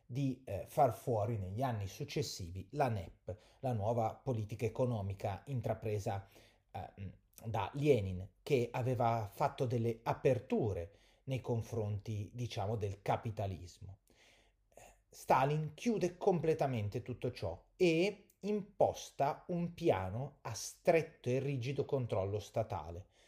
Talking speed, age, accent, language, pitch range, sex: 105 wpm, 30-49, native, Italian, 105-145 Hz, male